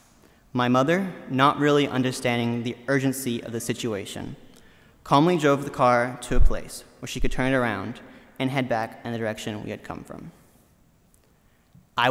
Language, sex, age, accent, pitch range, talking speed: English, male, 20-39, American, 115-140 Hz, 170 wpm